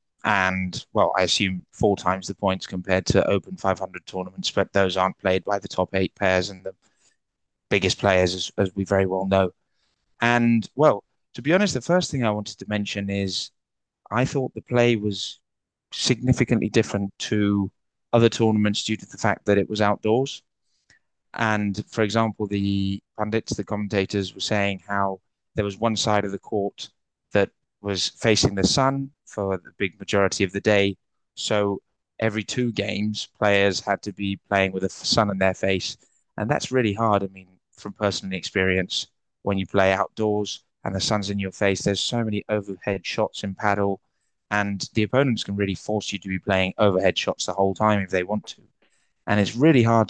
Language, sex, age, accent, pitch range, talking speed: English, male, 20-39, British, 95-110 Hz, 185 wpm